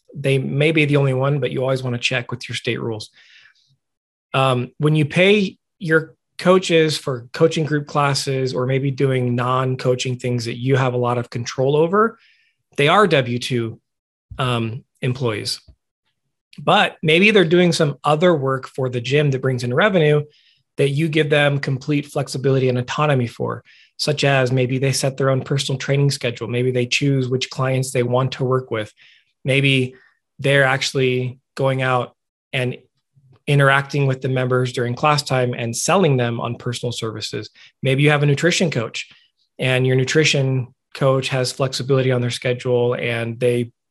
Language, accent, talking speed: English, American, 165 wpm